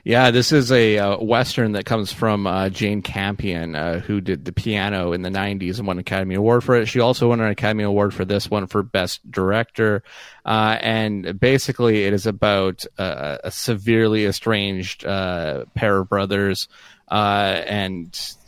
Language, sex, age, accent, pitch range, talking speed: English, male, 30-49, American, 100-115 Hz, 180 wpm